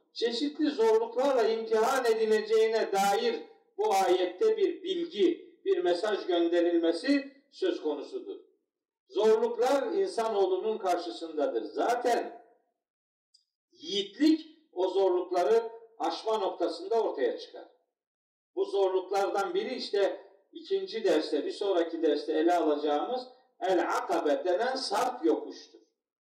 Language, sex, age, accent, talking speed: Turkish, male, 50-69, native, 90 wpm